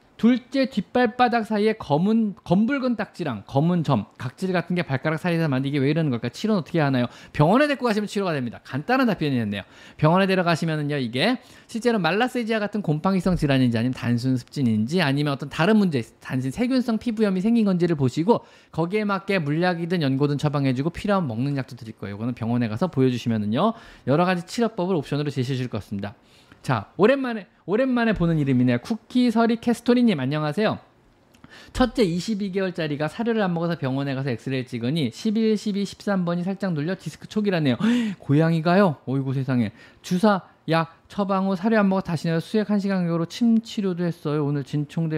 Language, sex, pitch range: Korean, male, 130-210 Hz